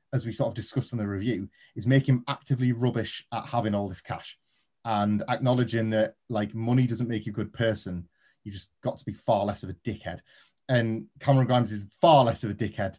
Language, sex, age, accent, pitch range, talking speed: English, male, 30-49, British, 110-130 Hz, 215 wpm